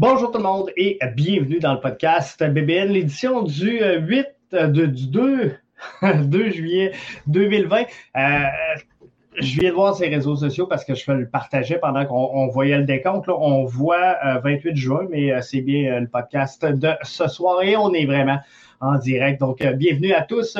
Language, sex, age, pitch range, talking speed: French, male, 30-49, 135-185 Hz, 190 wpm